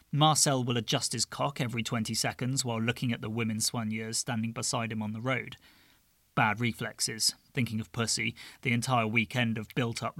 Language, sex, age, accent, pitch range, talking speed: English, male, 30-49, British, 115-135 Hz, 175 wpm